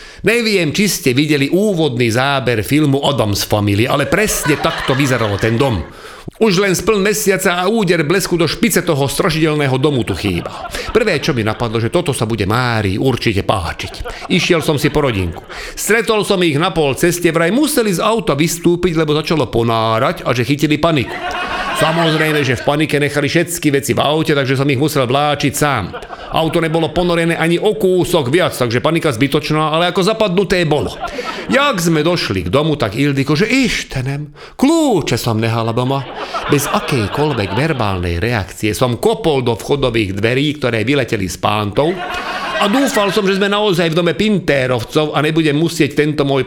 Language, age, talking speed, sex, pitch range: Czech, 40-59, 170 wpm, male, 130-170 Hz